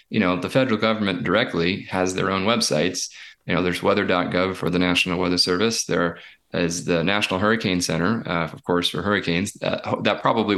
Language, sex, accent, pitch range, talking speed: English, male, American, 90-115 Hz, 185 wpm